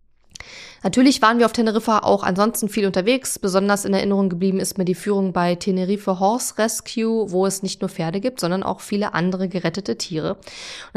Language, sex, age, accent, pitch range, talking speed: German, female, 20-39, German, 185-225 Hz, 185 wpm